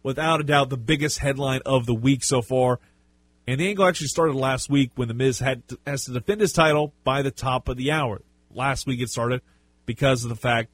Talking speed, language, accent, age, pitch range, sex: 235 wpm, English, American, 30-49, 105-145 Hz, male